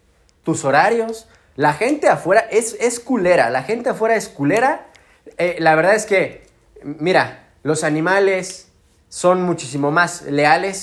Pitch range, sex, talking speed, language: 150-210 Hz, male, 140 wpm, English